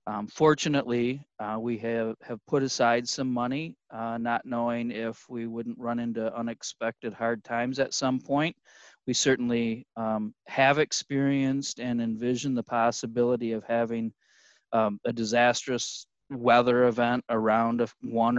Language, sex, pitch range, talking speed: English, male, 115-130 Hz, 140 wpm